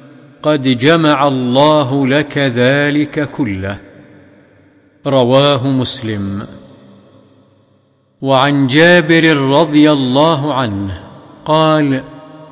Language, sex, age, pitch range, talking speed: Arabic, male, 50-69, 135-160 Hz, 65 wpm